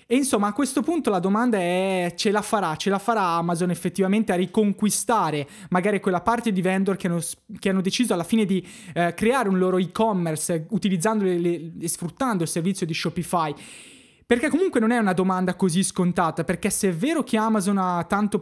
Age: 20-39